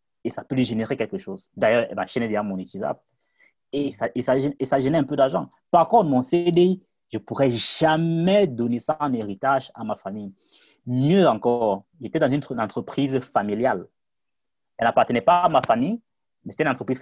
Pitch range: 115-145 Hz